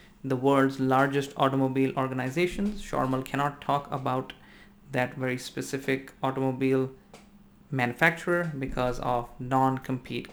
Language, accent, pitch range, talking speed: English, Indian, 130-160 Hz, 100 wpm